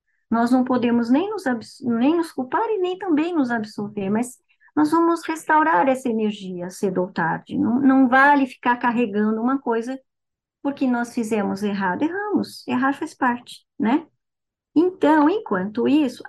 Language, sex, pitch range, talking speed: Portuguese, male, 220-275 Hz, 145 wpm